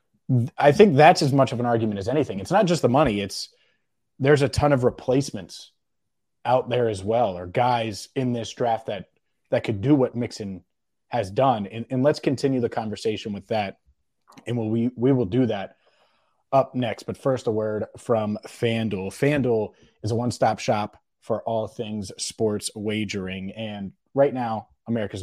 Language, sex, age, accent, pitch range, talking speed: English, male, 30-49, American, 105-140 Hz, 180 wpm